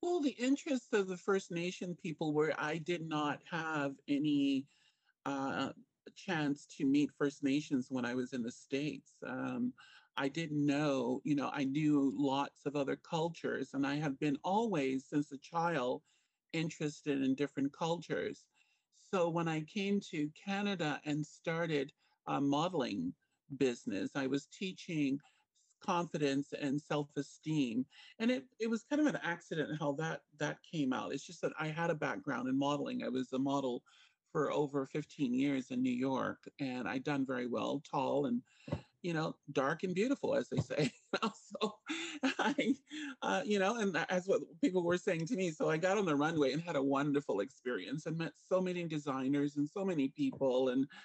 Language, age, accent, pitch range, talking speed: English, 50-69, American, 140-200 Hz, 175 wpm